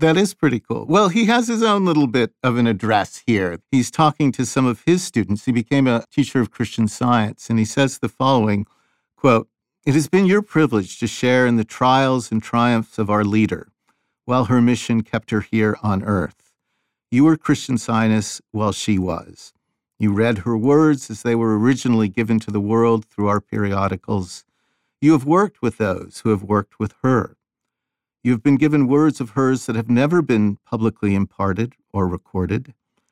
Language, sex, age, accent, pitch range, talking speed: English, male, 50-69, American, 105-135 Hz, 190 wpm